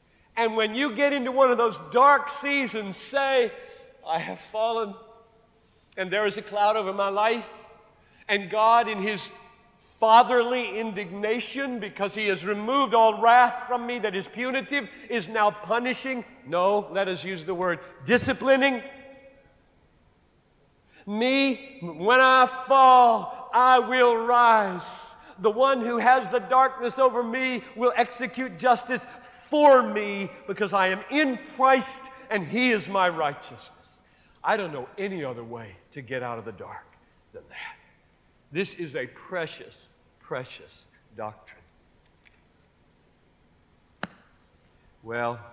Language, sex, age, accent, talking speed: English, male, 50-69, American, 130 wpm